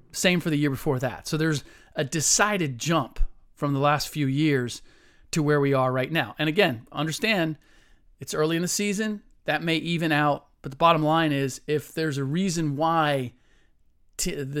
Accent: American